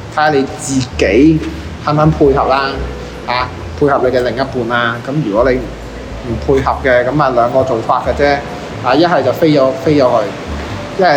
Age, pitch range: 20-39, 120-170 Hz